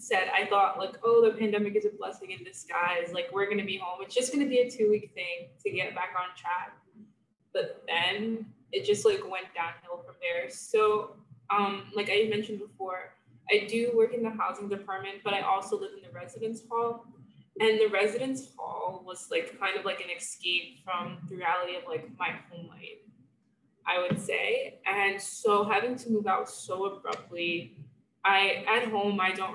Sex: female